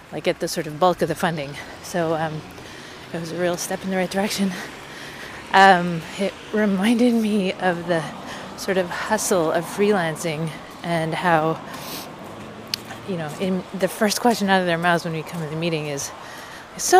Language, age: English, 30-49